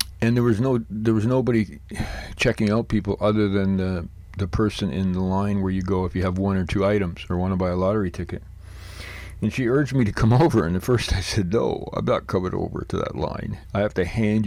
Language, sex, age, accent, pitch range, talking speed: English, male, 50-69, American, 90-105 Hz, 245 wpm